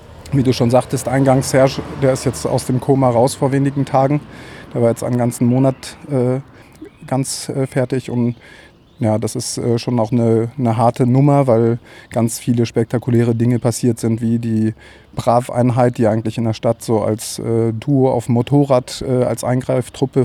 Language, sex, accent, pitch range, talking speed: German, male, German, 115-130 Hz, 185 wpm